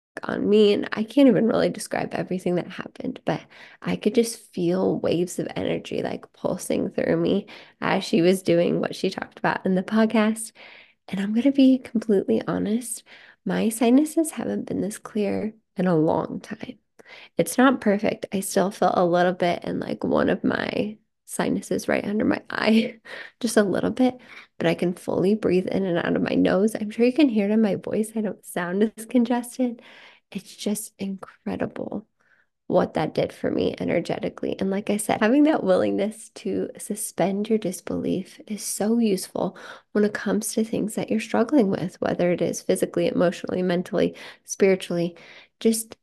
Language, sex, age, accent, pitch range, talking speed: English, female, 20-39, American, 185-235 Hz, 180 wpm